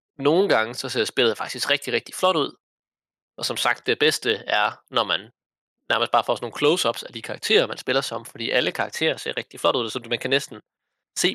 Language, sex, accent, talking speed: Danish, male, native, 220 wpm